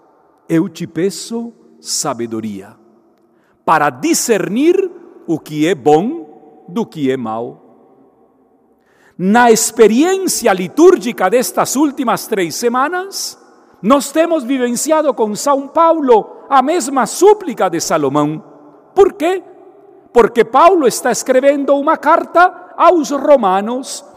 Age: 50-69